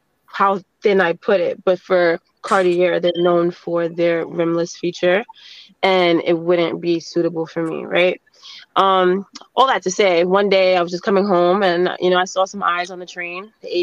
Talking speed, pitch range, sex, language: 200 wpm, 180-215 Hz, female, English